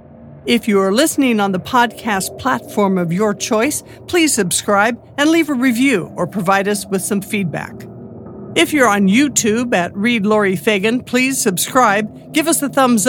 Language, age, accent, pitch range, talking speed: English, 50-69, American, 200-255 Hz, 170 wpm